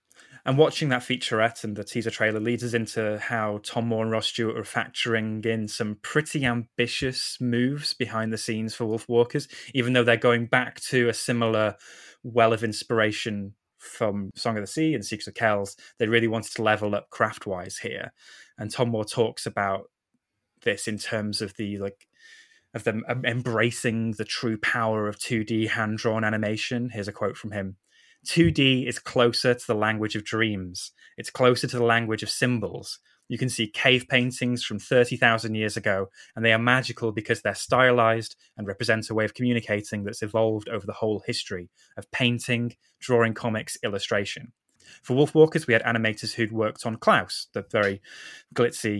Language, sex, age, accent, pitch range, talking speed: English, male, 10-29, British, 110-120 Hz, 175 wpm